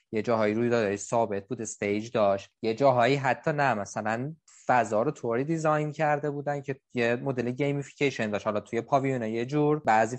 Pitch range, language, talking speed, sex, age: 110-135 Hz, Persian, 175 wpm, male, 20-39